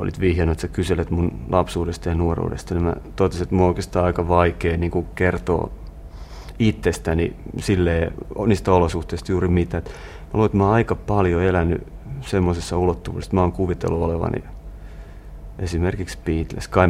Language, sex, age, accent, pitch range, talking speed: Finnish, male, 30-49, native, 80-95 Hz, 145 wpm